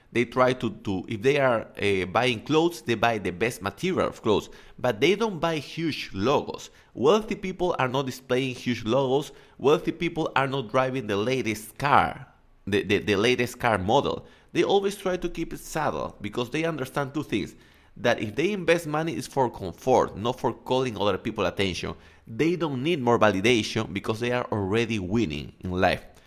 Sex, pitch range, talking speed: male, 110-165 Hz, 185 wpm